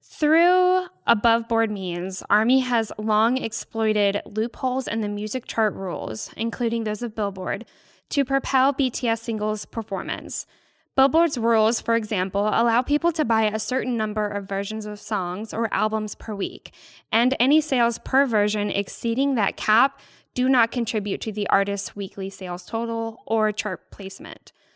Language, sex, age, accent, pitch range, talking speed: English, female, 10-29, American, 205-250 Hz, 150 wpm